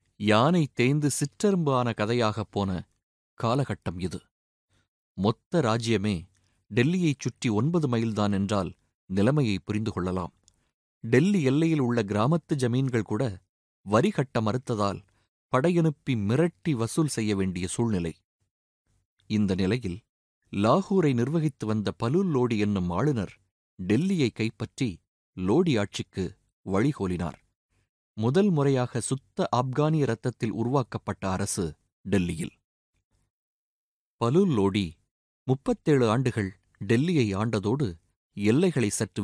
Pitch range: 100-140 Hz